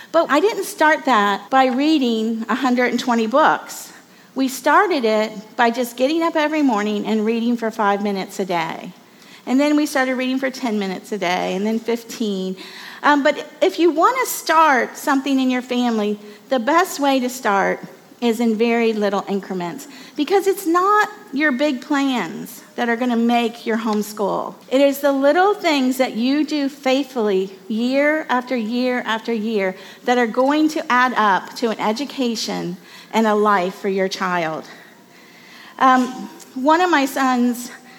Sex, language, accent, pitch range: female, English, American, 215-270 Hz